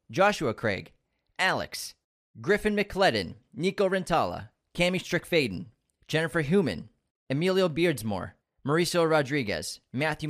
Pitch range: 125-180 Hz